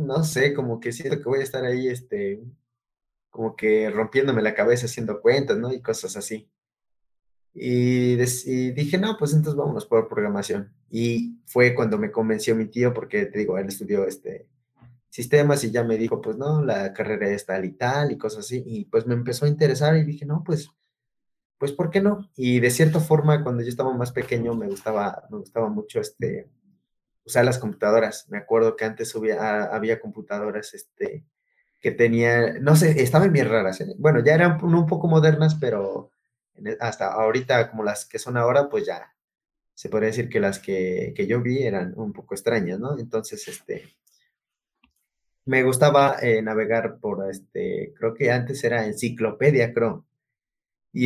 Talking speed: 180 wpm